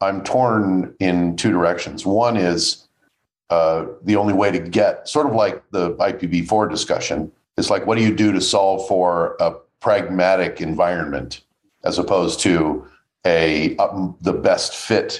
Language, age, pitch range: English, 50-69, 90-105 Hz